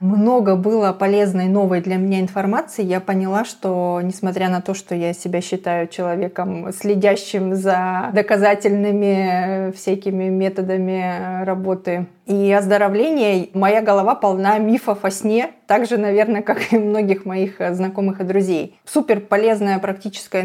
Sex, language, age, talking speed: female, Russian, 30-49, 130 wpm